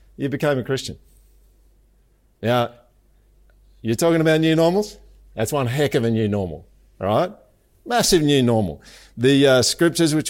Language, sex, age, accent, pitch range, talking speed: English, male, 50-69, Australian, 115-145 Hz, 150 wpm